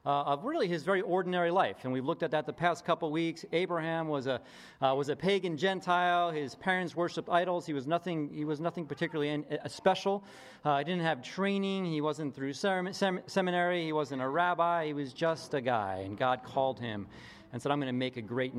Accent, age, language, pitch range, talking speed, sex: American, 40-59, English, 125-170 Hz, 215 wpm, male